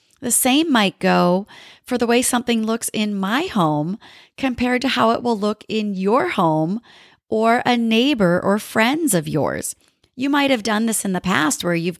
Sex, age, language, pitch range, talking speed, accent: female, 40-59, English, 185-240 Hz, 190 wpm, American